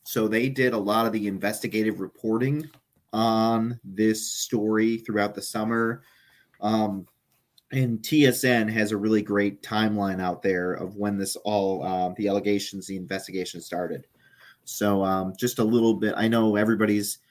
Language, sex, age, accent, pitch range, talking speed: English, male, 30-49, American, 100-115 Hz, 155 wpm